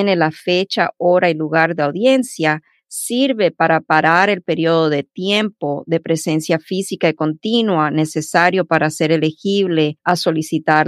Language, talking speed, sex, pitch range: Spanish, 140 wpm, female, 150-180 Hz